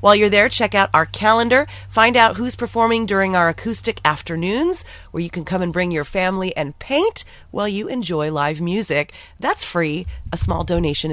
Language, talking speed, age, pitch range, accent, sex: English, 190 wpm, 30-49, 165-230 Hz, American, female